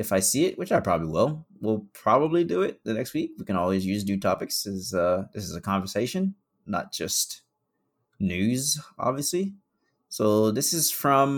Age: 20-39